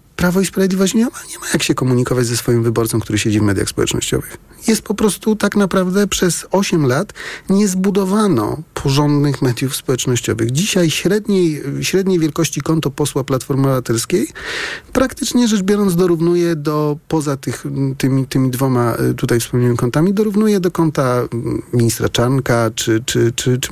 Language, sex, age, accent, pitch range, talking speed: Polish, male, 40-59, native, 125-180 Hz, 140 wpm